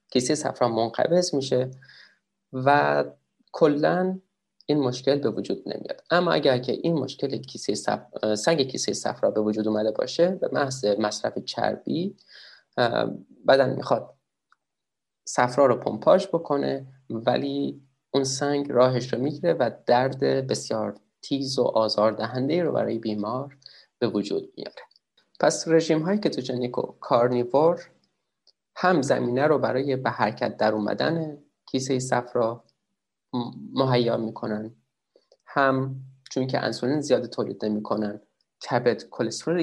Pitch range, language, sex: 110-145 Hz, Persian, male